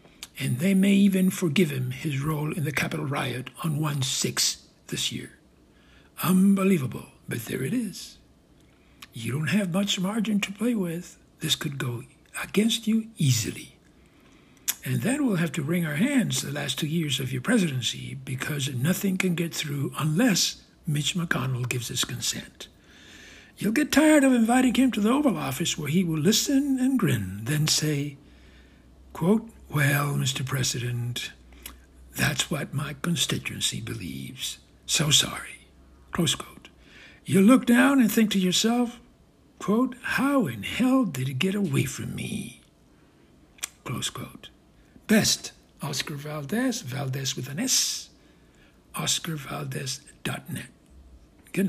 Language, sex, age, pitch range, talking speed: English, male, 60-79, 130-205 Hz, 140 wpm